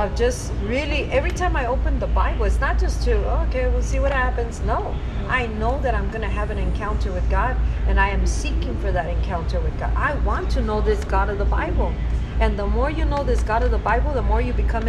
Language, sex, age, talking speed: English, female, 40-59, 240 wpm